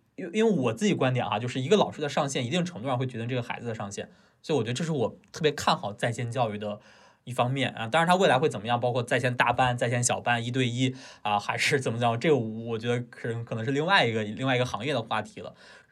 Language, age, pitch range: Chinese, 20-39, 110-140 Hz